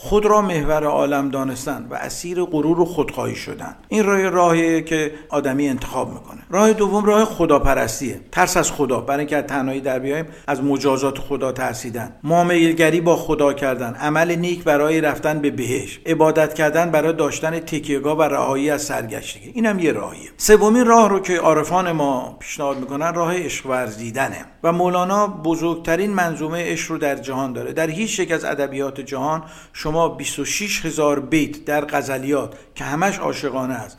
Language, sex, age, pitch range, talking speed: Persian, male, 50-69, 140-175 Hz, 160 wpm